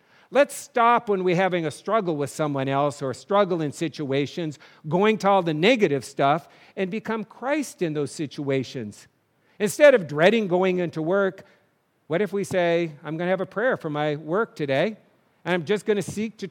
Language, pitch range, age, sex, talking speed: English, 145-205 Hz, 50-69, male, 195 wpm